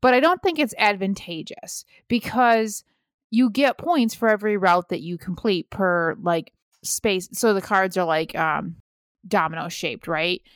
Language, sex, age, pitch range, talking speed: English, female, 30-49, 175-225 Hz, 155 wpm